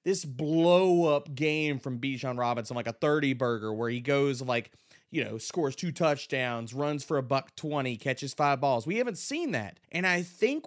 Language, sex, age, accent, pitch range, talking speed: English, male, 30-49, American, 145-220 Hz, 200 wpm